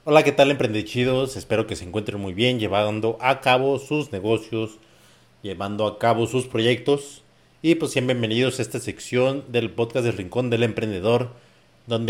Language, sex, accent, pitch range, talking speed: Spanish, male, Mexican, 95-125 Hz, 165 wpm